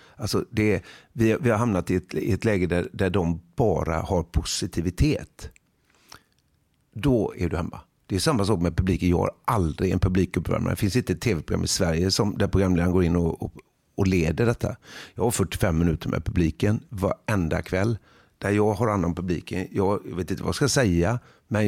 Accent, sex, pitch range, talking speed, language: Swedish, male, 90-110 Hz, 180 wpm, English